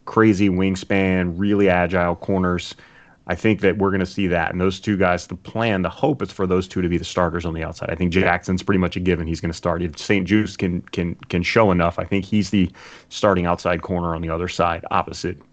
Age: 30-49